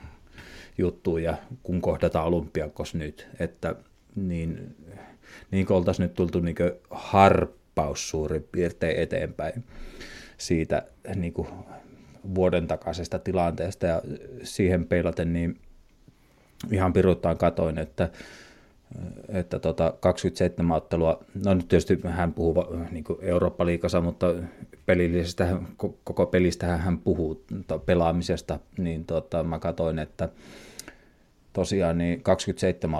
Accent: native